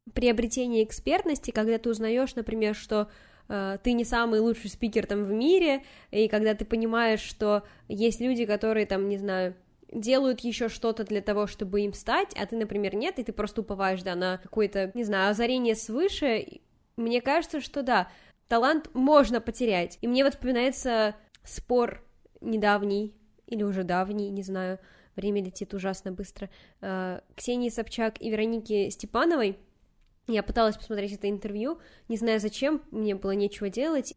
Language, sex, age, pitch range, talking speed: Russian, female, 10-29, 210-260 Hz, 160 wpm